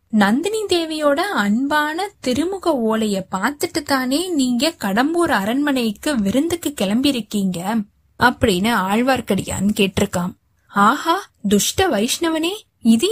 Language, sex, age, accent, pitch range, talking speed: Tamil, female, 20-39, native, 205-285 Hz, 90 wpm